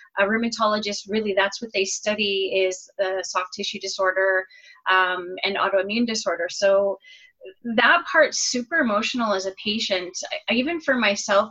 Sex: female